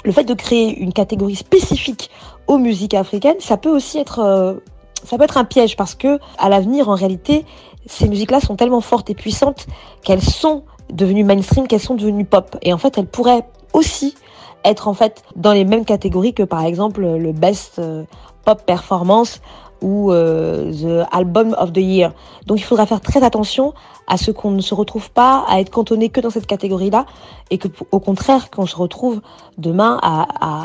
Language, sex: French, female